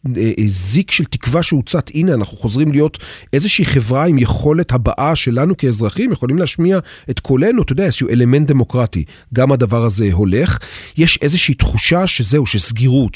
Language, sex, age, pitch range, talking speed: Hebrew, male, 40-59, 115-150 Hz, 150 wpm